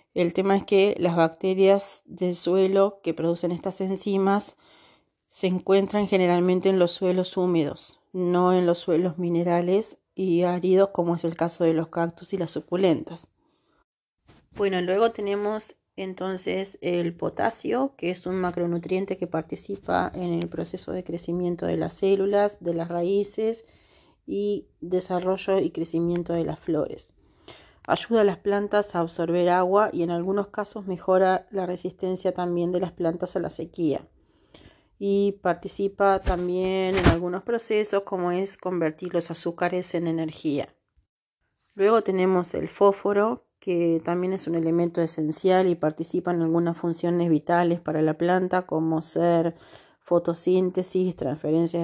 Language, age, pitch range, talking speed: Spanish, 30-49, 170-190 Hz, 140 wpm